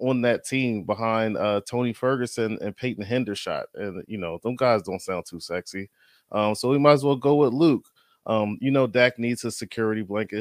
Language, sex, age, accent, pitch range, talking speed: English, male, 20-39, American, 100-130 Hz, 210 wpm